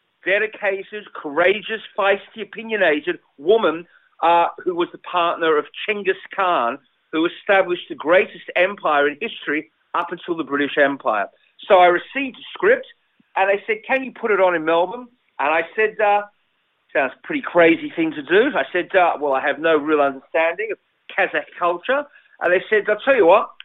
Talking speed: 175 wpm